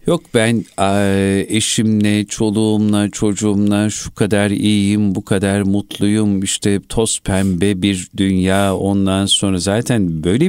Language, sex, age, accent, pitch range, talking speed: Turkish, male, 50-69, native, 90-100 Hz, 115 wpm